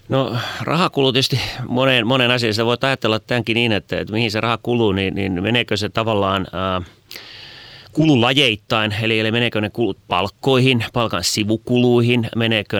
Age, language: 30-49, Finnish